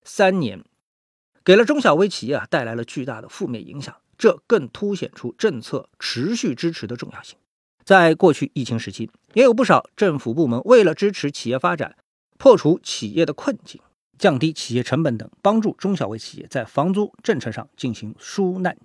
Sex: male